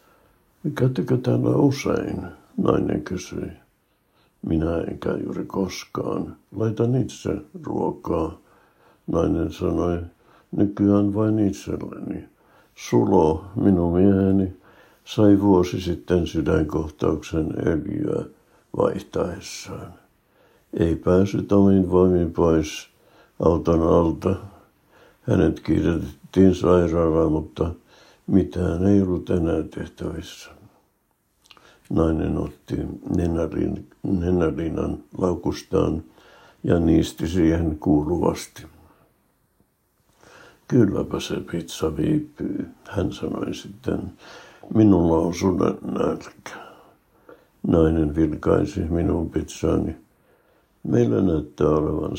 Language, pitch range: Finnish, 80-95 Hz